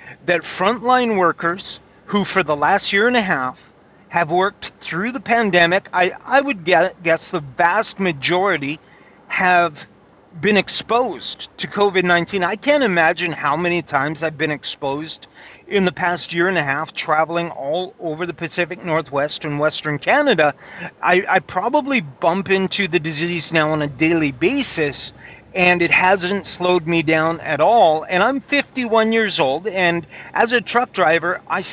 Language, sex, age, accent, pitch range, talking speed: English, male, 40-59, American, 160-200 Hz, 160 wpm